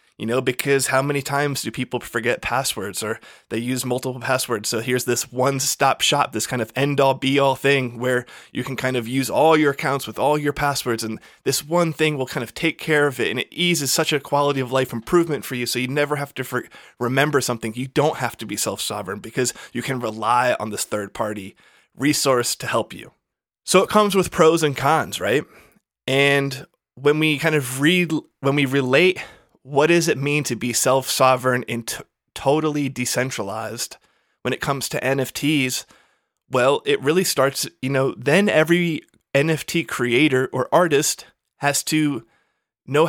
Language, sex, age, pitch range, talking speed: English, male, 20-39, 130-150 Hz, 185 wpm